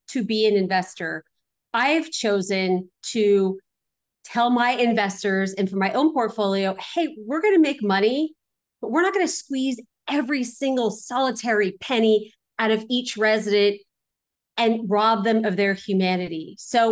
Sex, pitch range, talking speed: female, 195-235 Hz, 145 wpm